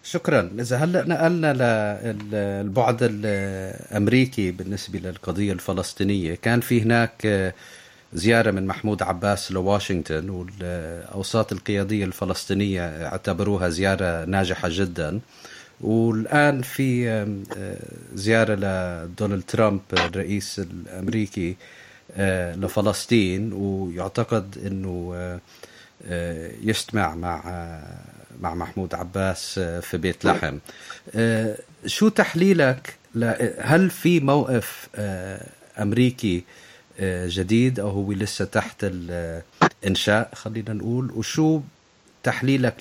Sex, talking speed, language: male, 85 wpm, English